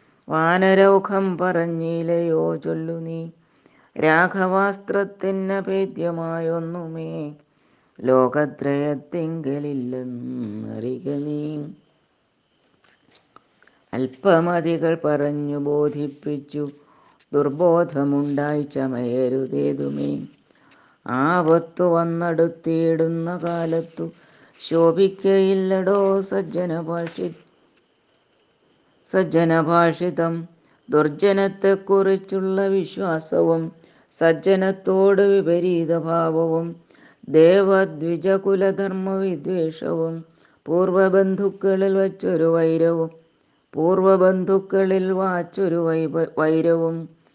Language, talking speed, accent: Malayalam, 40 wpm, native